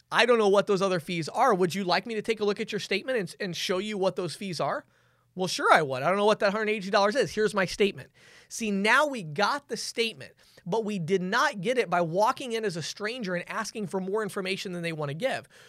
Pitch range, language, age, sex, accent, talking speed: 180-225 Hz, English, 20-39, male, American, 270 wpm